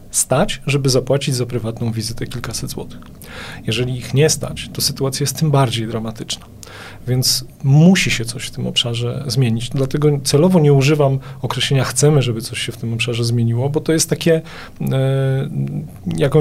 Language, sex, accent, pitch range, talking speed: Polish, male, native, 125-150 Hz, 165 wpm